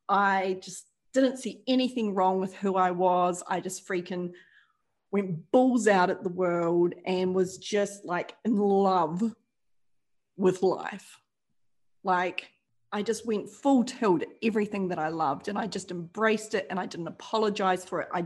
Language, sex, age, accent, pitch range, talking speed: English, female, 30-49, Australian, 180-215 Hz, 160 wpm